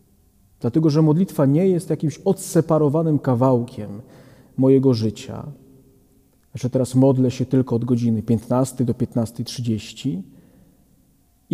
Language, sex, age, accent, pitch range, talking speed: Polish, male, 40-59, native, 130-155 Hz, 110 wpm